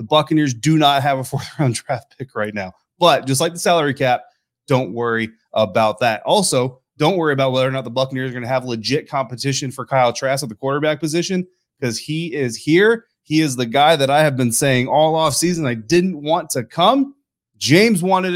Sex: male